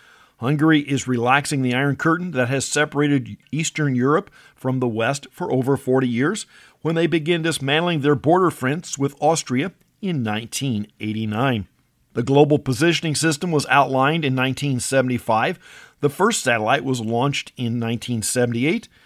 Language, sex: English, male